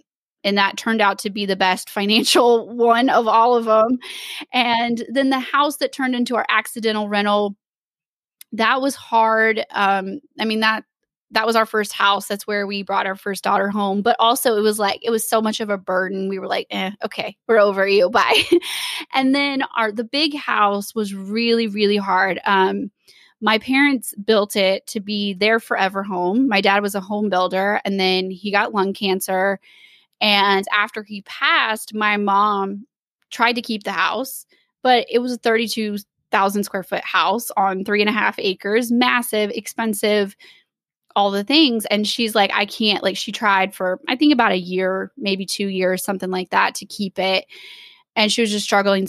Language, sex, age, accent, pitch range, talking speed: English, female, 20-39, American, 195-230 Hz, 190 wpm